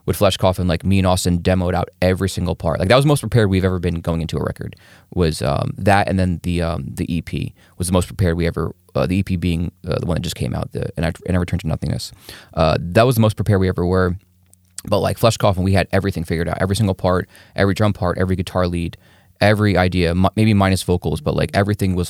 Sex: male